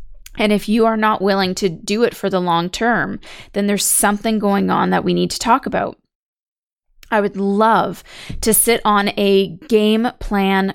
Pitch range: 170-210 Hz